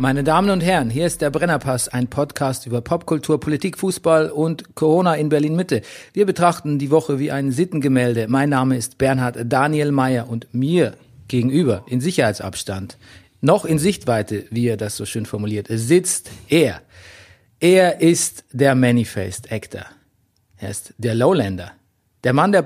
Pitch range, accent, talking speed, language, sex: 120-165 Hz, German, 155 wpm, German, male